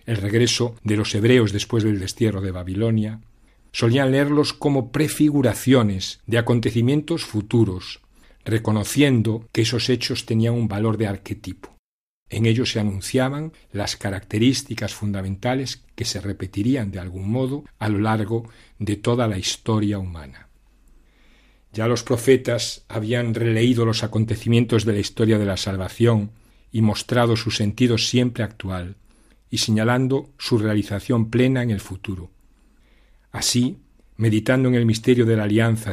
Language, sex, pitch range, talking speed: Spanish, male, 100-120 Hz, 135 wpm